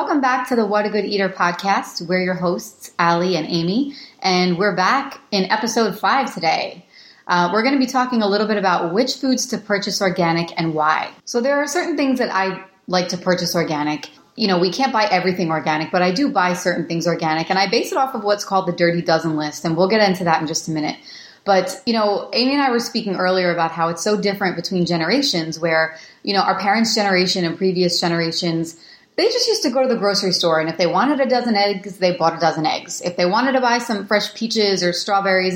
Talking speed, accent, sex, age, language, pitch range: 240 wpm, American, female, 30-49, English, 175-225 Hz